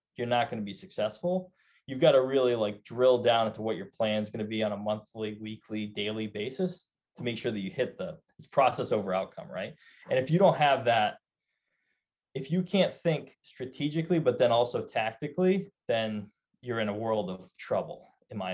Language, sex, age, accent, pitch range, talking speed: English, male, 20-39, American, 110-160 Hz, 200 wpm